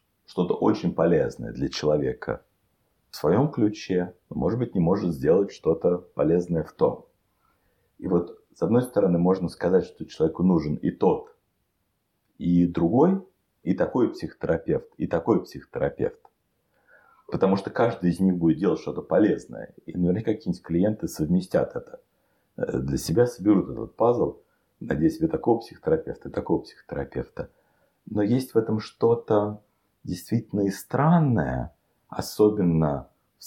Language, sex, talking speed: Russian, male, 135 wpm